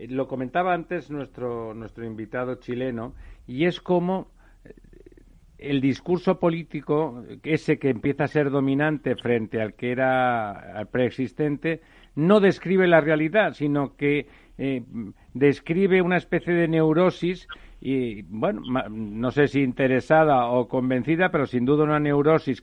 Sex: male